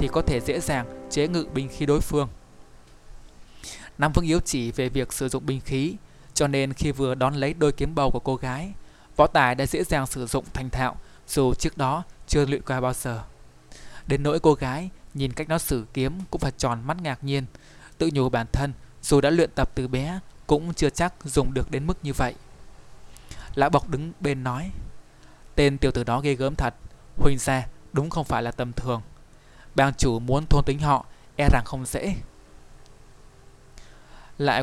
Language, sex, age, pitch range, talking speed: Vietnamese, male, 20-39, 120-140 Hz, 200 wpm